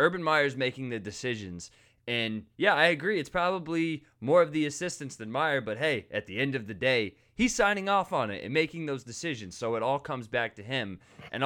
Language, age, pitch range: English, 20-39, 110-145 Hz